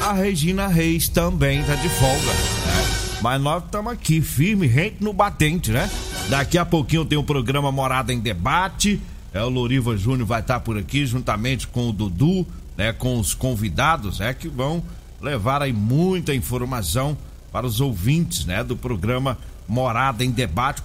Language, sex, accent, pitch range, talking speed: Portuguese, male, Brazilian, 110-160 Hz, 175 wpm